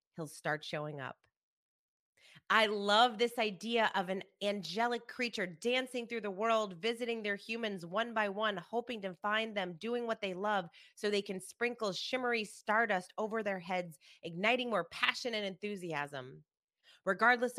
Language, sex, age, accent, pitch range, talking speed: English, female, 30-49, American, 180-230 Hz, 155 wpm